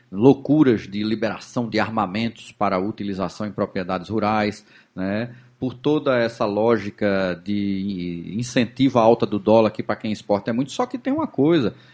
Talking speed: 165 wpm